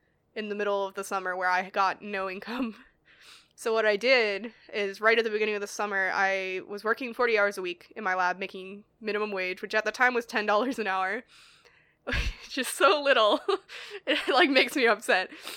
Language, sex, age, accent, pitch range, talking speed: English, female, 10-29, American, 190-225 Hz, 200 wpm